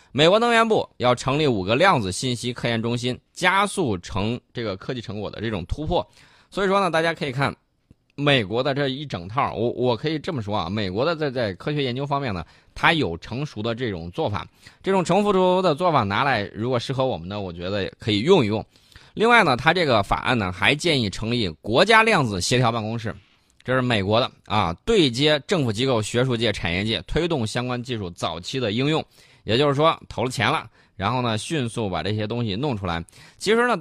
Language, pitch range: Chinese, 100-145 Hz